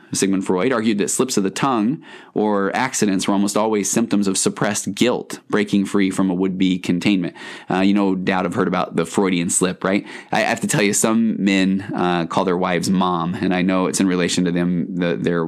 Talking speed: 215 wpm